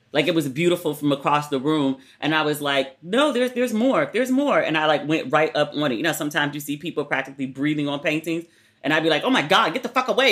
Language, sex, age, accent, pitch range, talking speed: English, female, 30-49, American, 150-185 Hz, 275 wpm